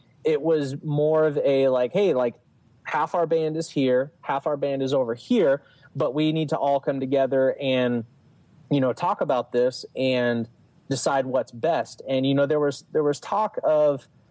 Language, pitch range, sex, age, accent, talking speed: English, 130-155 Hz, male, 30-49, American, 190 wpm